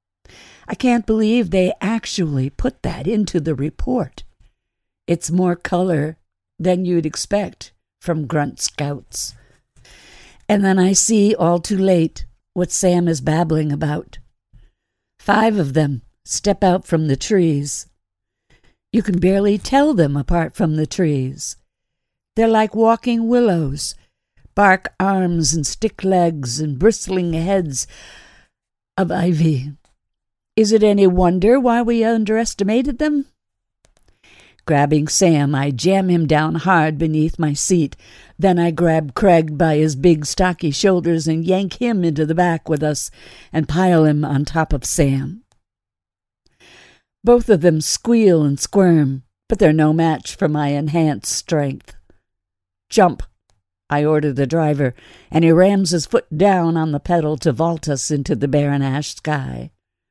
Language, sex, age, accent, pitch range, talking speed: English, female, 60-79, American, 140-185 Hz, 140 wpm